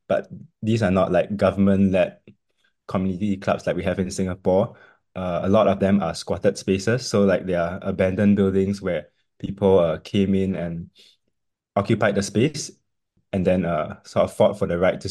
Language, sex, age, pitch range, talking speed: English, male, 20-39, 95-105 Hz, 185 wpm